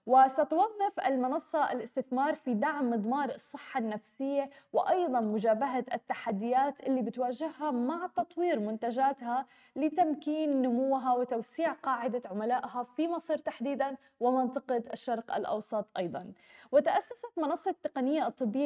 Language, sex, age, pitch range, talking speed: Arabic, female, 10-29, 235-280 Hz, 100 wpm